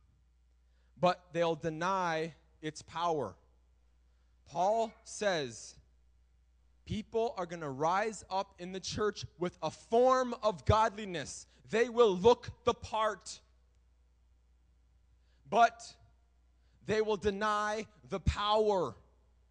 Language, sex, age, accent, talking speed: English, male, 30-49, American, 100 wpm